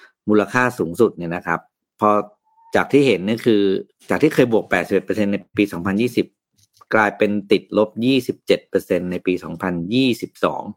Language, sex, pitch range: Thai, male, 100-130 Hz